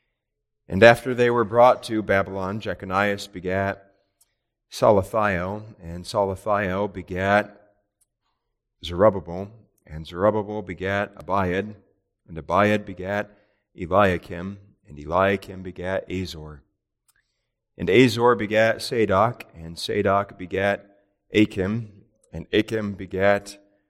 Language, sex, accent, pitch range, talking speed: English, male, American, 85-105 Hz, 95 wpm